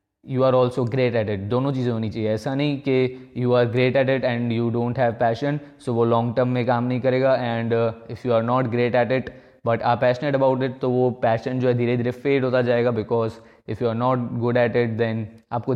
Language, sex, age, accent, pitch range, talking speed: Hindi, male, 20-39, native, 115-135 Hz, 250 wpm